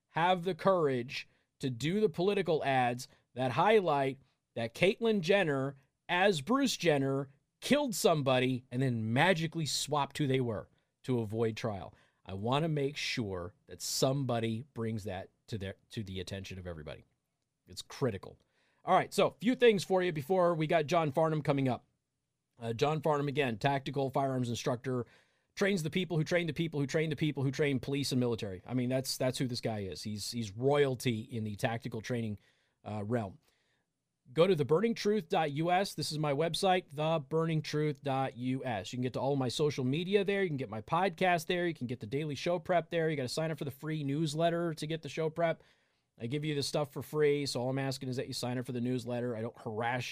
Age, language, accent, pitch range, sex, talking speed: 30-49, English, American, 120-160 Hz, male, 200 wpm